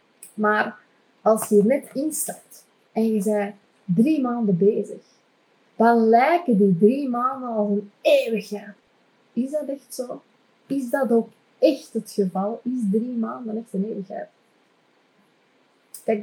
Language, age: Dutch, 30-49